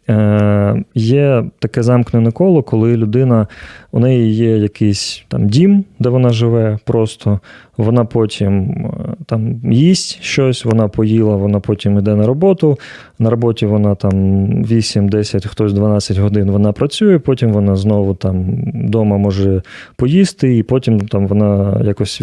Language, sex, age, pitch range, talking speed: Ukrainian, male, 20-39, 105-125 Hz, 135 wpm